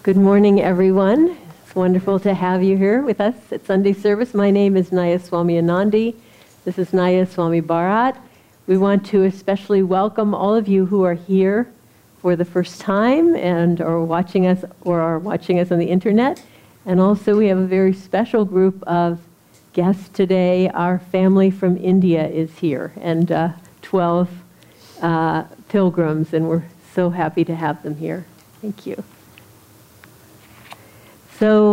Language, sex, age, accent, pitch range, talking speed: English, female, 50-69, American, 170-205 Hz, 155 wpm